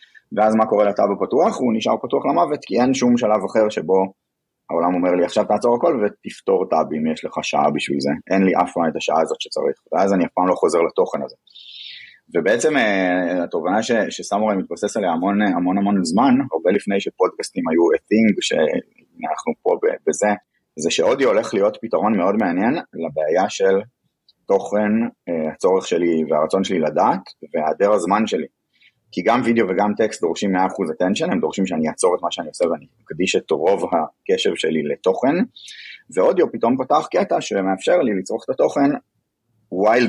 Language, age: Hebrew, 30-49